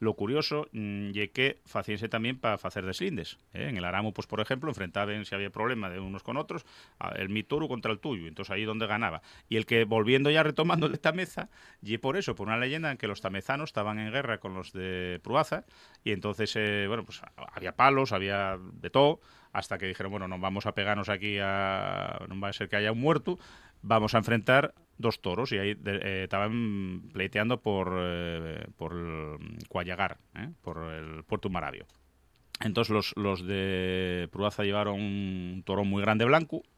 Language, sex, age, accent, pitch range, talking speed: Spanish, male, 30-49, Spanish, 95-115 Hz, 195 wpm